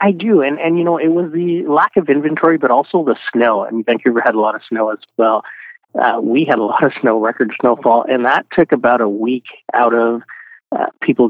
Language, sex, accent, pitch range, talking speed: English, male, American, 120-155 Hz, 235 wpm